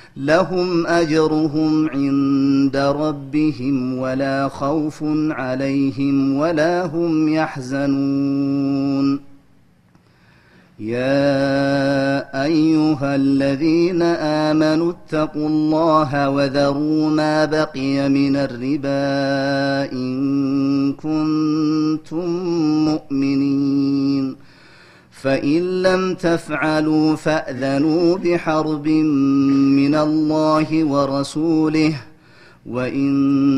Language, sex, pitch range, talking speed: Amharic, male, 140-155 Hz, 60 wpm